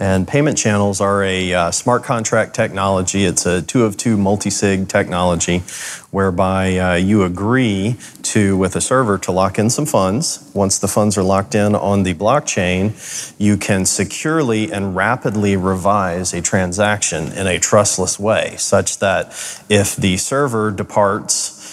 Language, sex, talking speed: English, male, 155 wpm